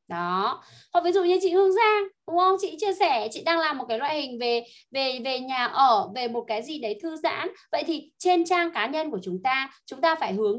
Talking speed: 255 wpm